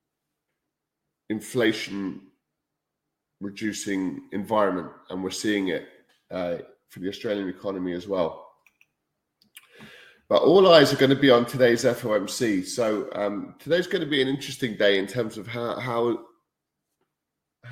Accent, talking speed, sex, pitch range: British, 120 wpm, male, 100-125 Hz